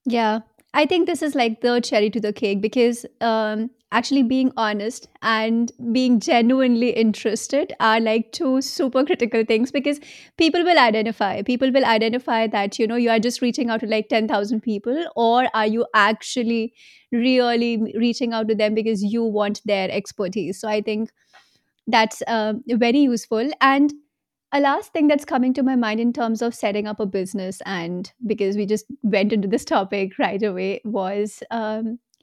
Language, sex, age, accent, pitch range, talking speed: English, female, 30-49, Indian, 215-255 Hz, 175 wpm